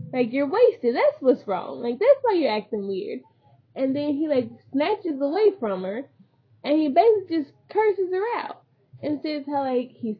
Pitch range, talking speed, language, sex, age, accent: 220-310 Hz, 190 wpm, English, female, 10-29, American